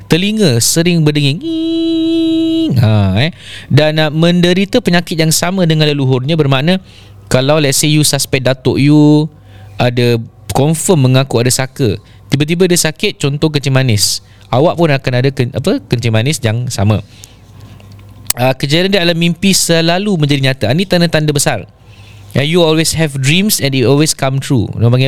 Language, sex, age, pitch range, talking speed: Malay, male, 20-39, 125-165 Hz, 155 wpm